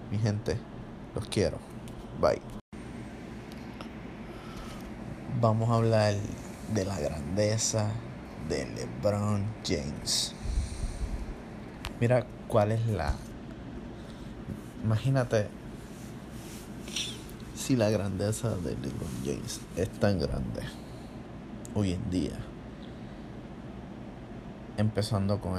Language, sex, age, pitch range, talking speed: Spanish, male, 20-39, 90-110 Hz, 75 wpm